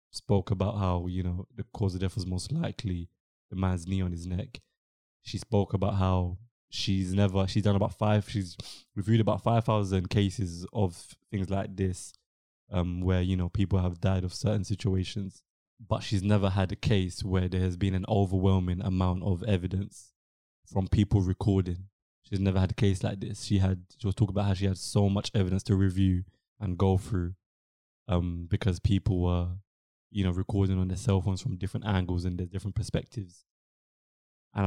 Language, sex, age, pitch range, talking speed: English, male, 20-39, 95-105 Hz, 190 wpm